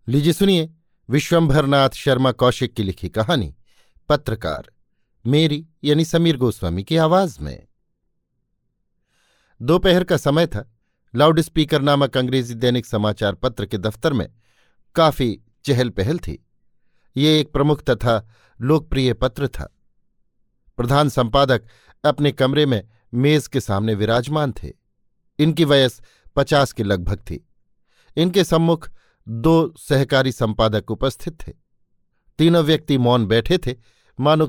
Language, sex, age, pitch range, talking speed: Hindi, male, 50-69, 115-155 Hz, 120 wpm